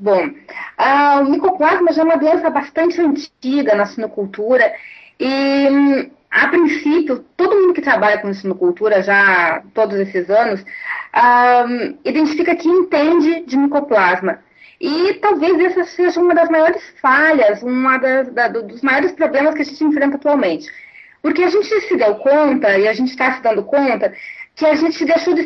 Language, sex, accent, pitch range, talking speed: Portuguese, female, Brazilian, 240-330 Hz, 150 wpm